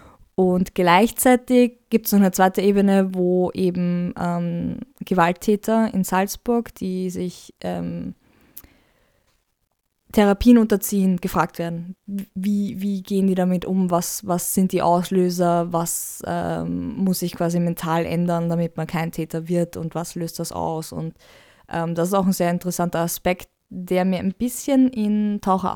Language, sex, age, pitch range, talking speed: German, female, 20-39, 175-200 Hz, 150 wpm